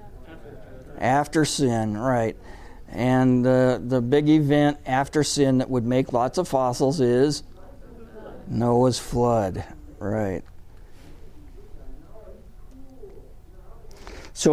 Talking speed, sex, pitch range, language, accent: 85 wpm, male, 110-150 Hz, English, American